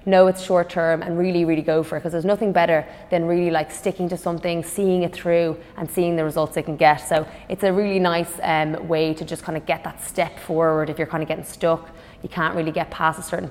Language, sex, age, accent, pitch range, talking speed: English, female, 20-39, Irish, 165-190 Hz, 260 wpm